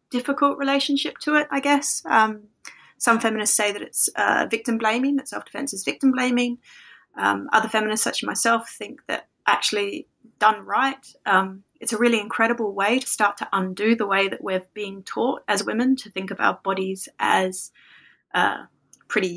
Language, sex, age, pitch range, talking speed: English, female, 30-49, 195-235 Hz, 175 wpm